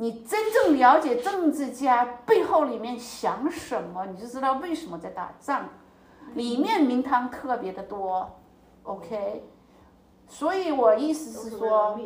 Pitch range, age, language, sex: 205-290 Hz, 50-69, Chinese, female